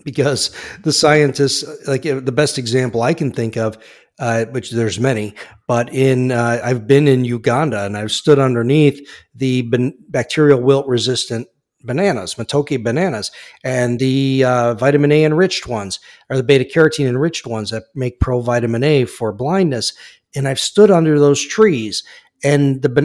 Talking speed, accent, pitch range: 160 wpm, American, 125-150 Hz